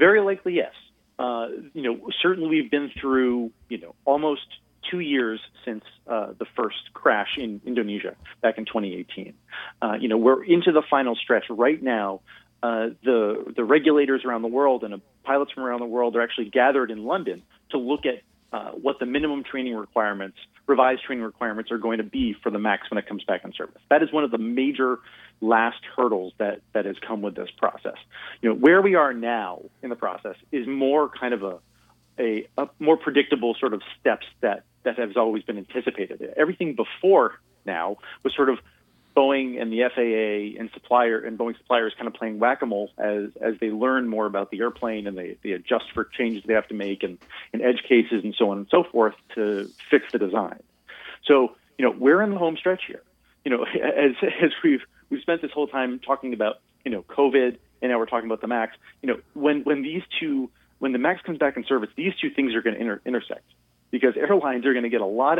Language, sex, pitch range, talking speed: English, male, 110-140 Hz, 210 wpm